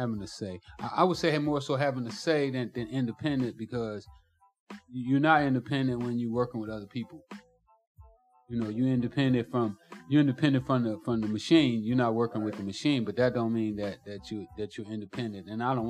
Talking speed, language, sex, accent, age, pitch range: 210 wpm, English, male, American, 30-49, 95-125 Hz